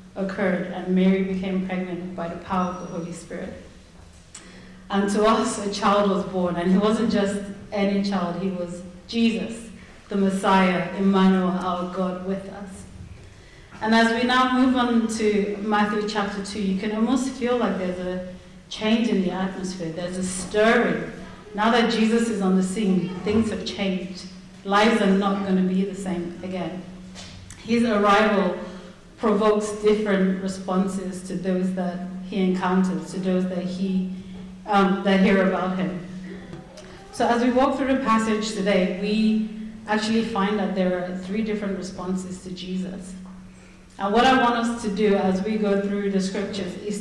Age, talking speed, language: 30-49, 165 wpm, English